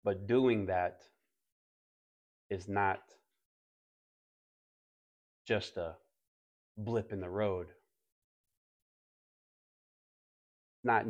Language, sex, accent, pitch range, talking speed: English, male, American, 90-130 Hz, 65 wpm